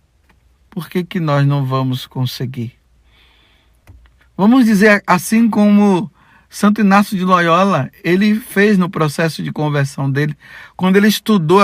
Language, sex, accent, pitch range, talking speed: Portuguese, male, Brazilian, 145-210 Hz, 130 wpm